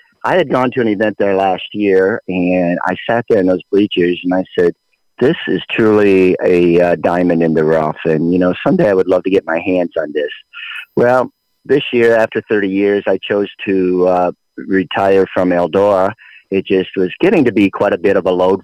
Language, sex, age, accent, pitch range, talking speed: English, male, 50-69, American, 90-110 Hz, 215 wpm